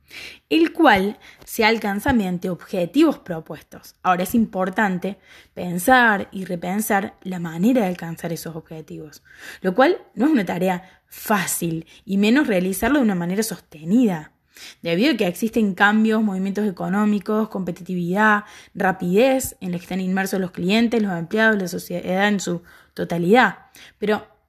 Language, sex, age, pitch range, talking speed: Spanish, female, 20-39, 180-230 Hz, 140 wpm